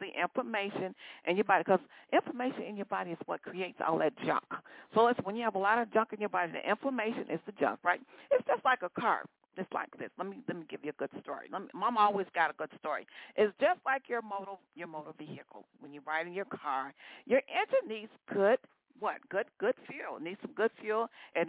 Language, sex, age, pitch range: English, female, 50-69, 185-260 Hz